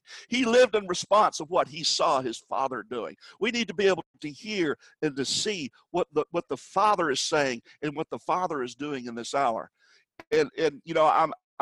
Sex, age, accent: male, 50-69, American